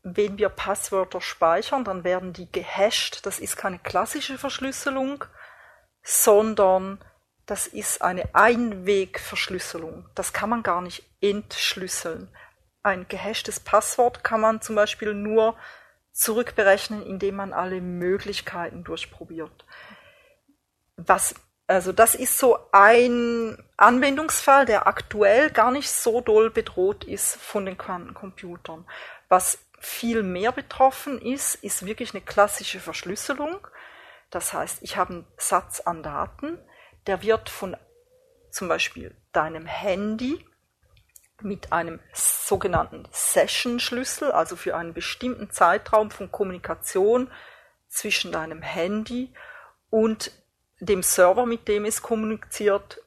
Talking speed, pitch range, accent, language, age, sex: 115 wpm, 190-245 Hz, German, German, 40-59, female